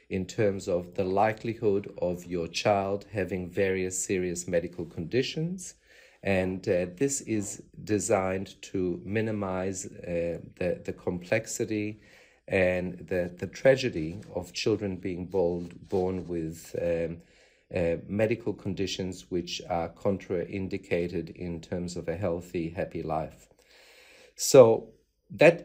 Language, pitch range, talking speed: English, 90-110 Hz, 115 wpm